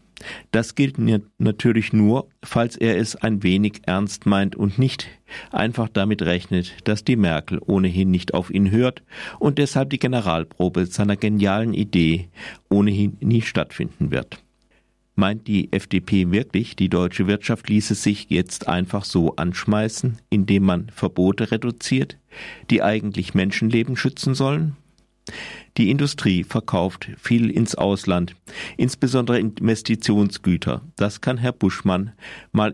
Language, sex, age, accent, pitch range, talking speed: German, male, 50-69, German, 95-115 Hz, 130 wpm